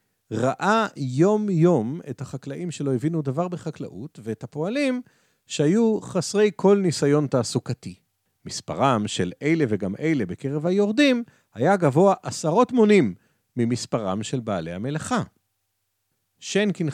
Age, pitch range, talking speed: 40-59, 110-175 Hz, 110 wpm